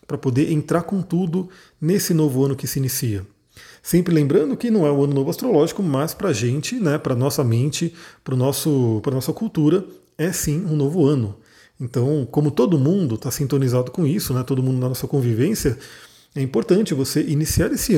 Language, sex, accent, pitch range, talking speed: Portuguese, male, Brazilian, 130-175 Hz, 195 wpm